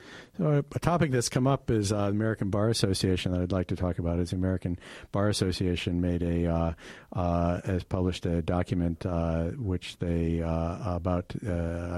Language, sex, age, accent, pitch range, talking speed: English, male, 50-69, American, 85-100 Hz, 190 wpm